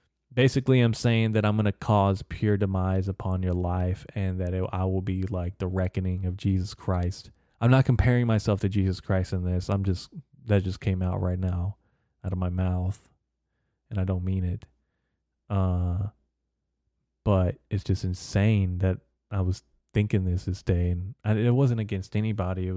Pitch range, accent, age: 90-105 Hz, American, 20-39